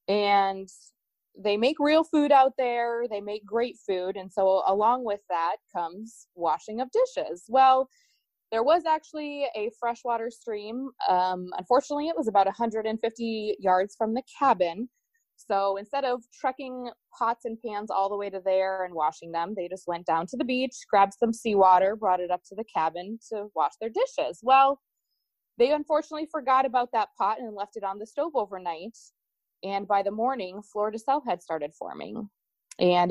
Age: 20-39